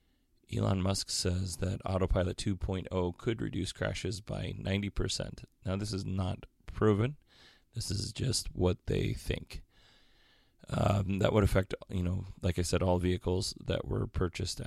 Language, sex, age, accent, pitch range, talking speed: English, male, 30-49, American, 90-115 Hz, 145 wpm